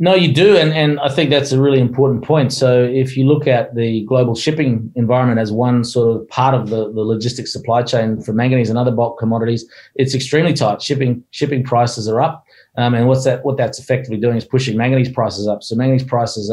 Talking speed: 225 wpm